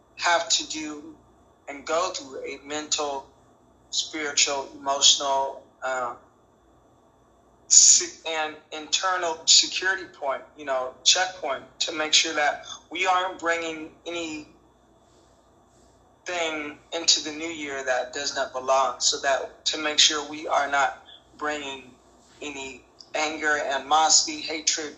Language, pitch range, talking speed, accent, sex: English, 140-170 Hz, 110 wpm, American, male